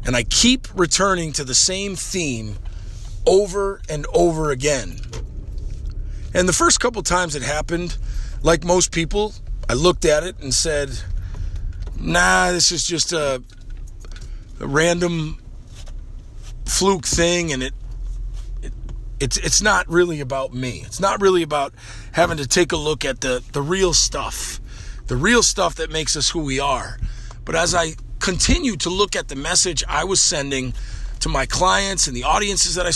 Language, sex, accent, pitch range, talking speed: English, male, American, 115-185 Hz, 160 wpm